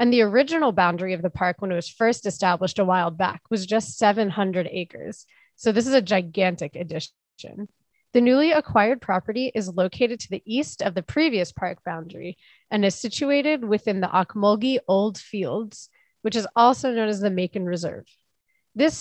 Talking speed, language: 175 wpm, English